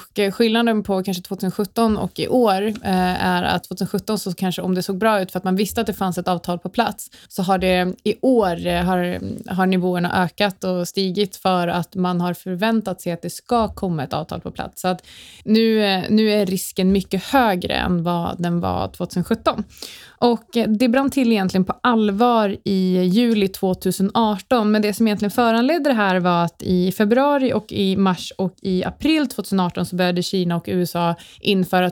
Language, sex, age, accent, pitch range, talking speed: Swedish, female, 20-39, native, 180-215 Hz, 190 wpm